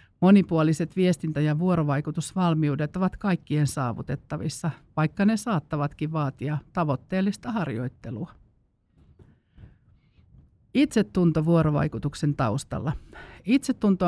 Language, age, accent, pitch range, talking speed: Finnish, 50-69, native, 140-175 Hz, 70 wpm